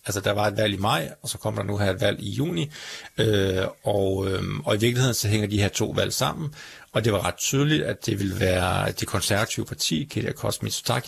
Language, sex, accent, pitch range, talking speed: Danish, male, native, 95-120 Hz, 235 wpm